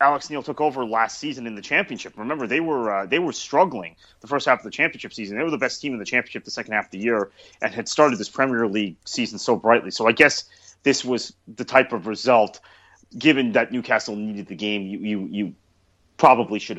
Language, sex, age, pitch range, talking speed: English, male, 30-49, 100-135 Hz, 235 wpm